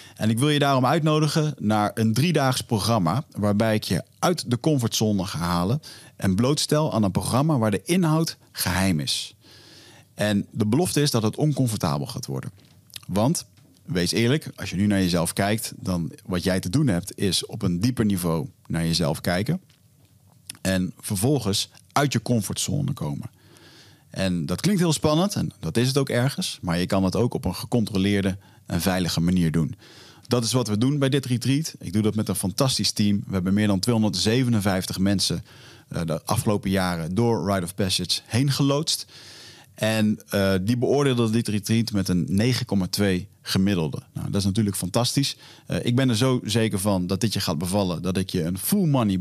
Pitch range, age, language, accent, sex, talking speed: 95-130 Hz, 40-59, Dutch, Dutch, male, 180 wpm